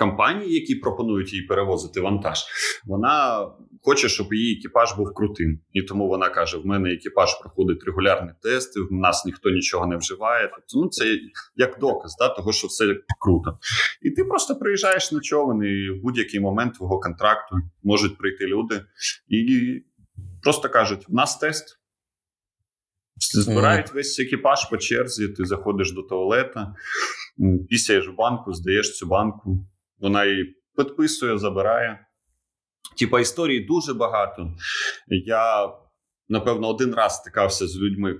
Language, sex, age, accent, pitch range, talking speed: Ukrainian, male, 20-39, native, 95-125 Hz, 140 wpm